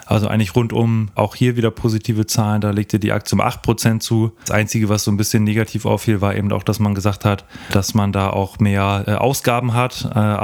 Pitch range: 105-115 Hz